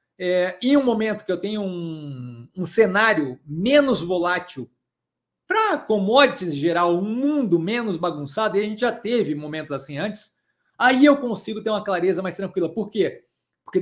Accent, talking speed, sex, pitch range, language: Brazilian, 165 wpm, male, 185-250 Hz, Portuguese